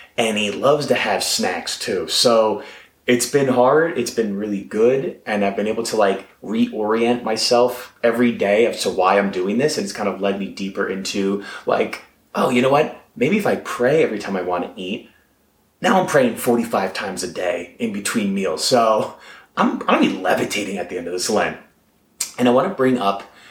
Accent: American